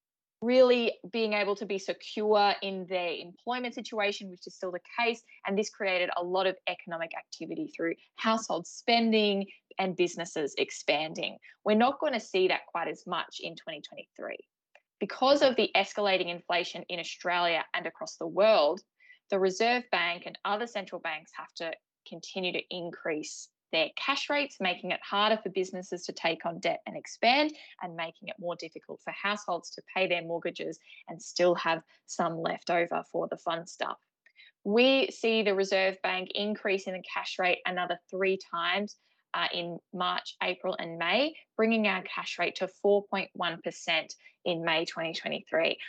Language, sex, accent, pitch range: English, female, Australian, 175-220 Hz